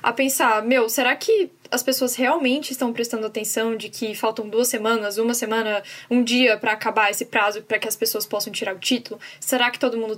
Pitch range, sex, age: 220-265 Hz, female, 10-29